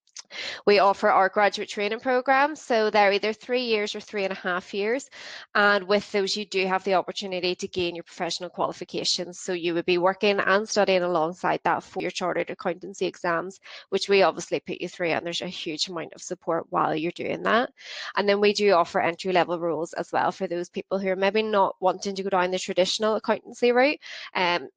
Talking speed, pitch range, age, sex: 210 wpm, 180-210 Hz, 20-39, female